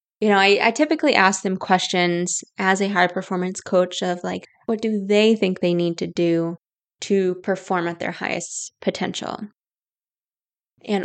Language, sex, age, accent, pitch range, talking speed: English, female, 20-39, American, 185-220 Hz, 155 wpm